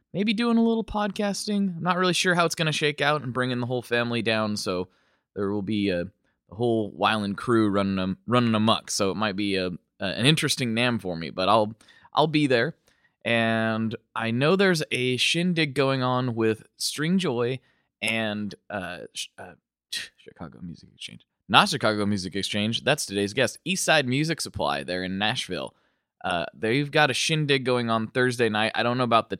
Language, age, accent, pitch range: English, 20-39, American, 110-150 Hz